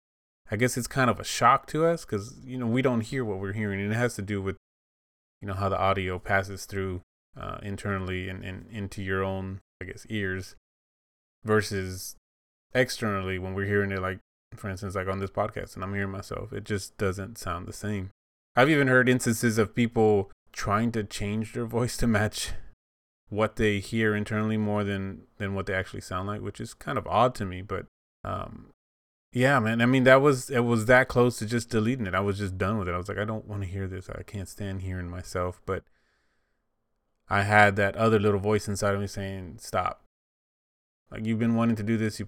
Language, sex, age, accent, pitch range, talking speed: English, male, 20-39, American, 95-115 Hz, 215 wpm